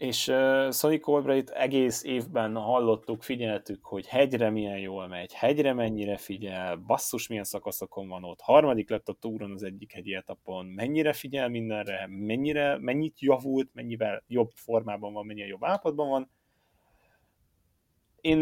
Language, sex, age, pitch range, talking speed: Hungarian, male, 30-49, 100-135 Hz, 145 wpm